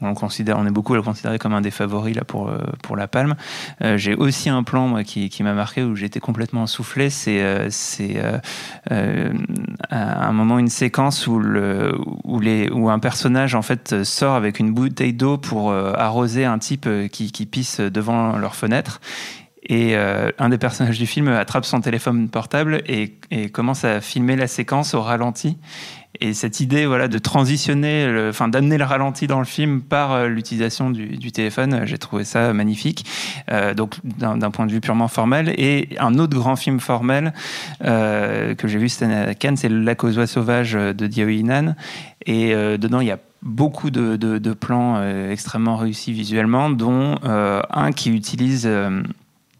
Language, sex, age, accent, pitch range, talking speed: French, male, 30-49, French, 110-130 Hz, 200 wpm